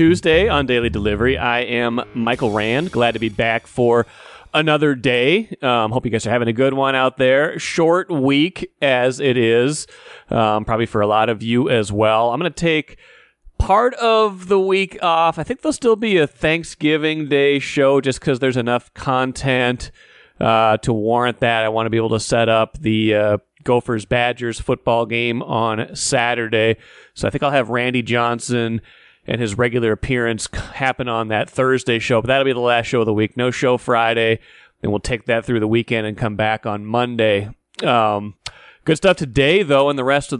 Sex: male